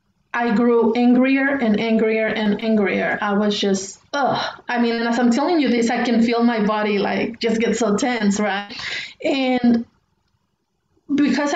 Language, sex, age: English, female, 30-49